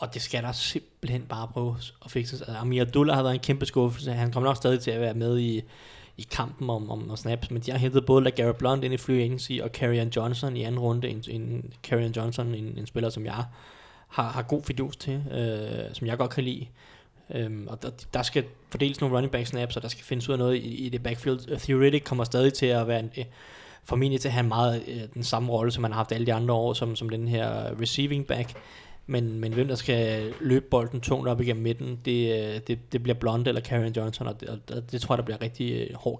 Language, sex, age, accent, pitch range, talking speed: Danish, male, 20-39, native, 115-130 Hz, 240 wpm